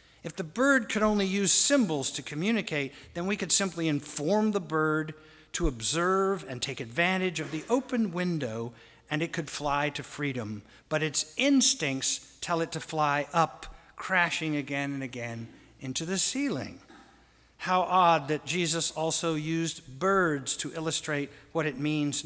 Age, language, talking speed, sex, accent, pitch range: 50-69, English, 155 wpm, male, American, 135-175 Hz